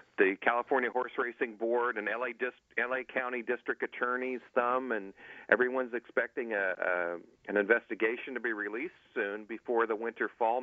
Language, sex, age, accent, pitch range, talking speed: English, male, 40-59, American, 110-125 Hz, 160 wpm